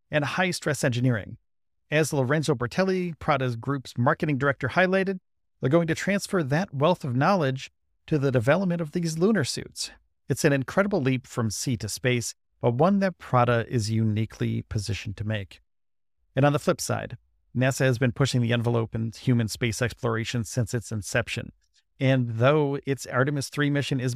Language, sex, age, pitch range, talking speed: English, male, 40-59, 120-155 Hz, 170 wpm